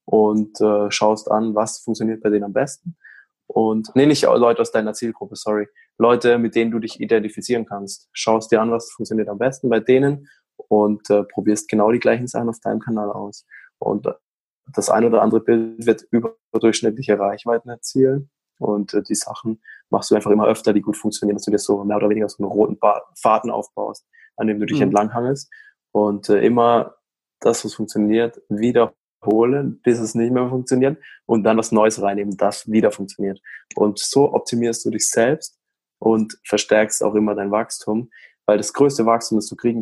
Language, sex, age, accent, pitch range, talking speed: German, male, 20-39, German, 105-120 Hz, 185 wpm